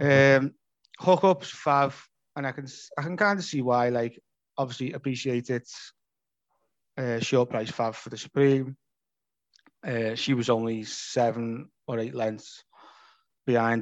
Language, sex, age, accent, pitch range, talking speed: English, male, 20-39, British, 115-135 Hz, 140 wpm